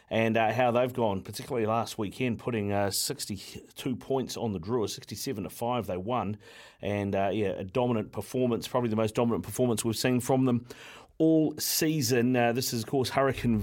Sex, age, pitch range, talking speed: male, 40-59, 110-130 Hz, 190 wpm